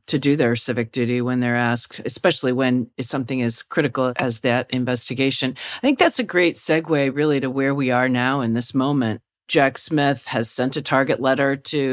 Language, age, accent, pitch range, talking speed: English, 40-59, American, 125-155 Hz, 200 wpm